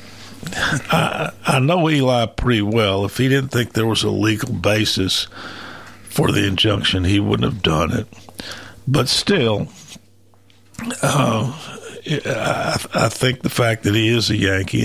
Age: 60-79